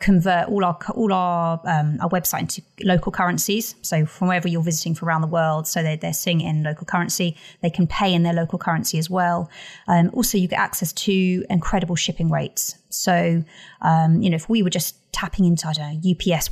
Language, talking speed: English, 215 wpm